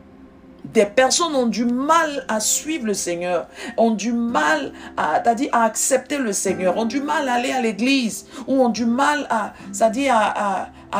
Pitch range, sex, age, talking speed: 170-260 Hz, female, 50-69, 190 wpm